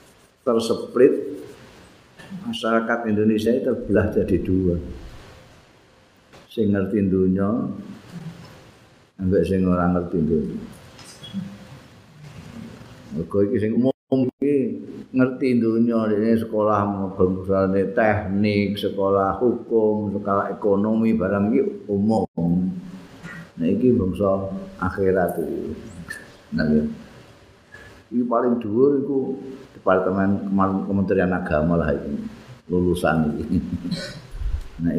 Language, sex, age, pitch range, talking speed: Indonesian, male, 50-69, 95-120 Hz, 80 wpm